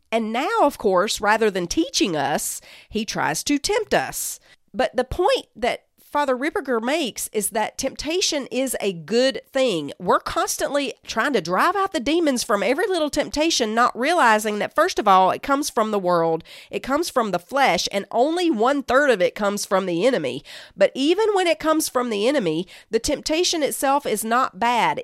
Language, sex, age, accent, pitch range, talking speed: English, female, 40-59, American, 190-285 Hz, 190 wpm